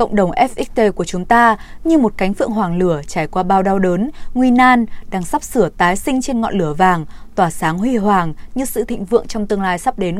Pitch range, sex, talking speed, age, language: 185-240 Hz, female, 240 wpm, 20-39, Vietnamese